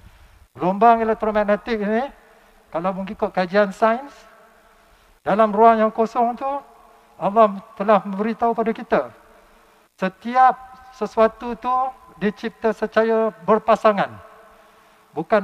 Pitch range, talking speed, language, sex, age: 195-240 Hz, 95 wpm, English, male, 50-69